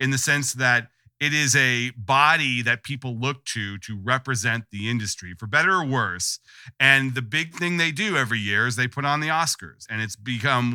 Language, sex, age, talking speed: English, male, 40-59, 205 wpm